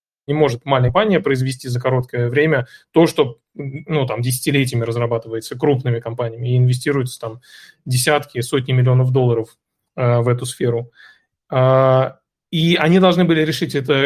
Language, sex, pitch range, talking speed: Russian, male, 125-155 Hz, 135 wpm